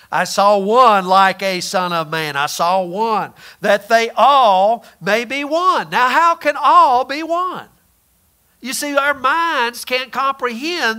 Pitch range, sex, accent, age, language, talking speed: 195-245 Hz, male, American, 50-69, English, 160 wpm